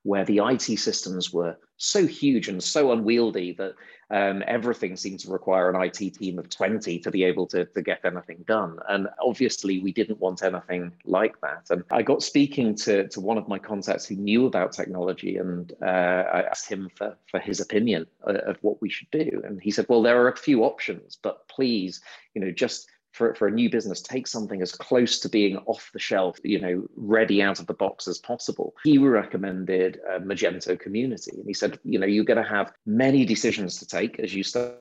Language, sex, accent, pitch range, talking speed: English, male, British, 95-115 Hz, 215 wpm